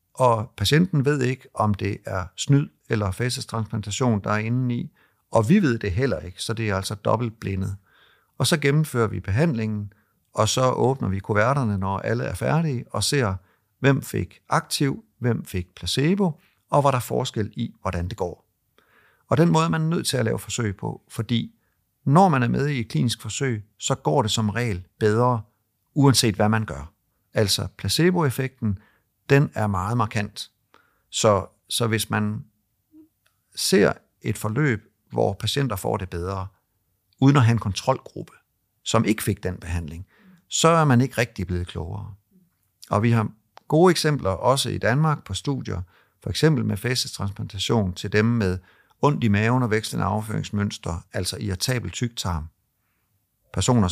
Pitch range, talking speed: 100-130 Hz, 165 wpm